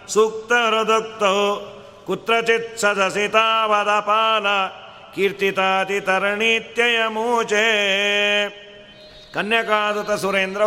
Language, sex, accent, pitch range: Kannada, male, native, 190-230 Hz